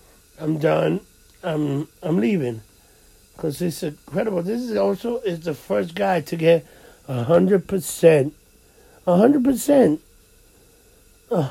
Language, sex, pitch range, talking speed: English, male, 150-210 Hz, 125 wpm